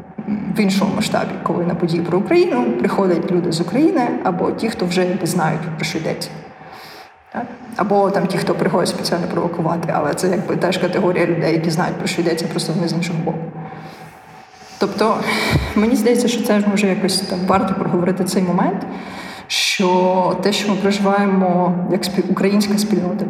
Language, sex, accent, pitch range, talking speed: Ukrainian, female, native, 180-205 Hz, 175 wpm